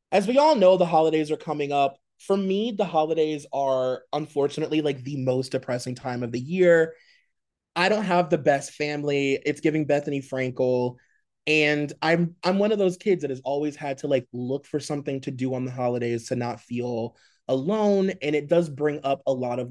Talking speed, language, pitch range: 200 wpm, English, 130-175 Hz